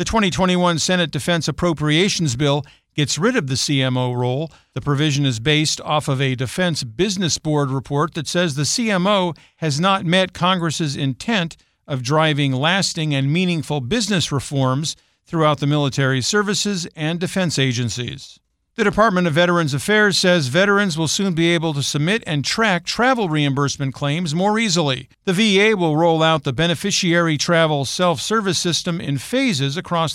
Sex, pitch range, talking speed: male, 140-180 Hz, 155 wpm